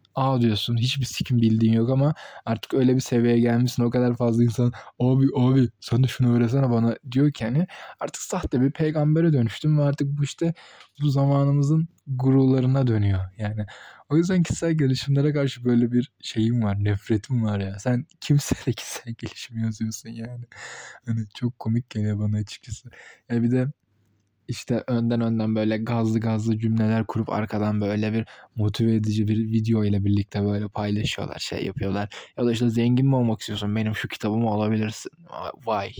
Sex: male